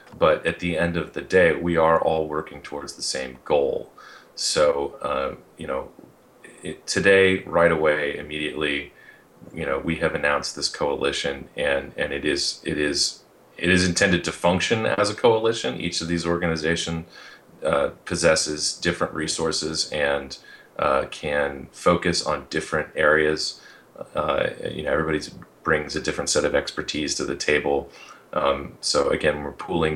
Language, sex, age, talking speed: English, male, 30-49, 155 wpm